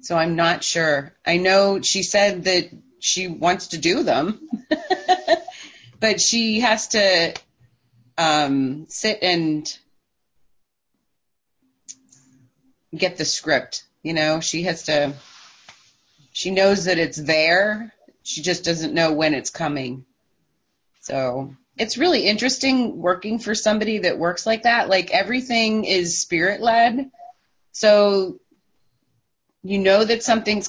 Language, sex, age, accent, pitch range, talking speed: English, female, 30-49, American, 160-225 Hz, 120 wpm